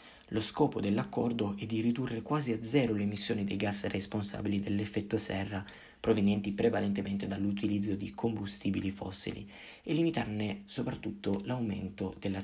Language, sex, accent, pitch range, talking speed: Italian, male, native, 100-115 Hz, 130 wpm